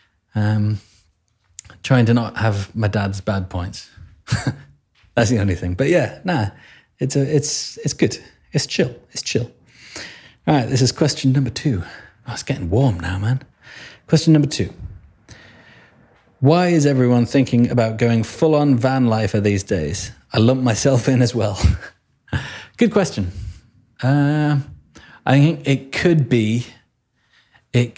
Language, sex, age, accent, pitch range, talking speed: English, male, 30-49, British, 105-135 Hz, 145 wpm